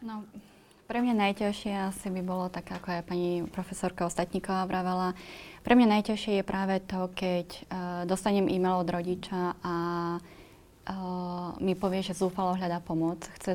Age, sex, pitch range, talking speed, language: 20-39, female, 170-190 Hz, 155 wpm, Slovak